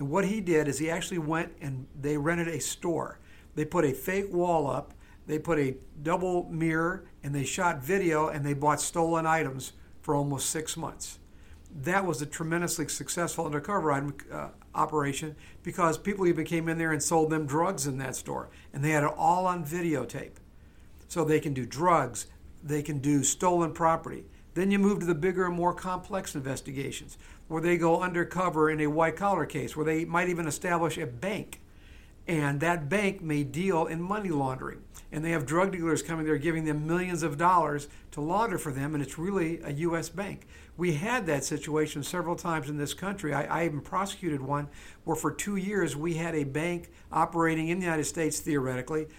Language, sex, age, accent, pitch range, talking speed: English, male, 50-69, American, 150-175 Hz, 195 wpm